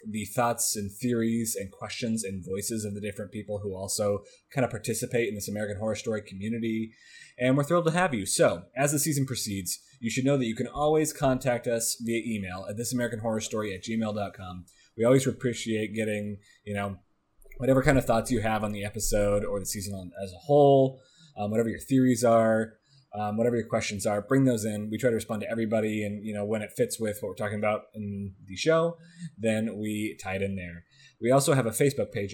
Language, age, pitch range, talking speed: English, 20-39, 105-125 Hz, 215 wpm